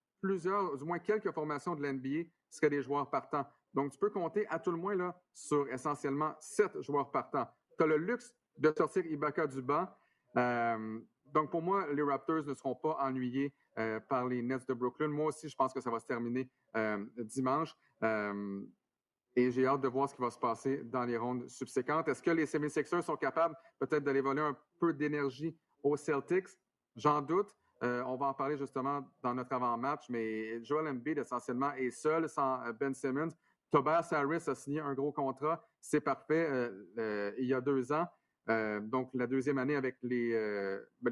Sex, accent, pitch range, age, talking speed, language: male, Canadian, 120-150 Hz, 40-59, 195 wpm, French